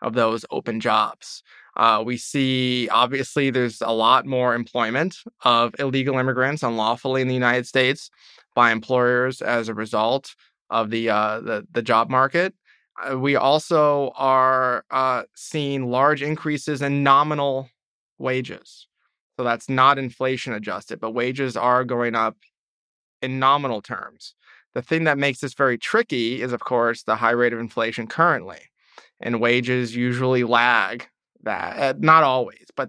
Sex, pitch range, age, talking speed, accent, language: male, 120-140 Hz, 20-39, 150 wpm, American, English